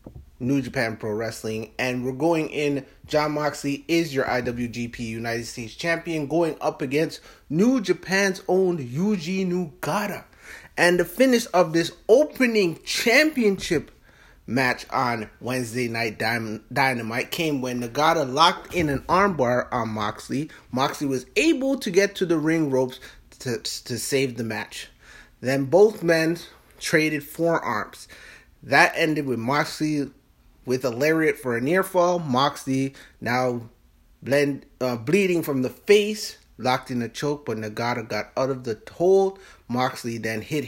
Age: 30-49